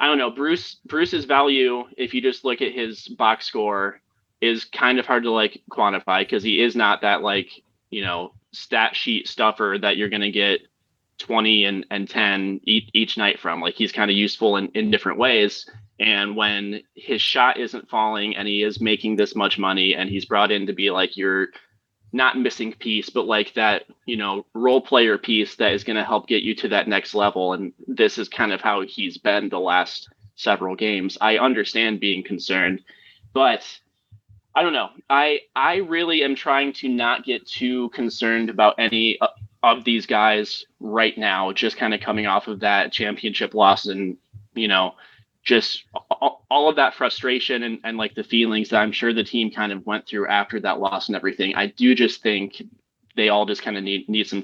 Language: English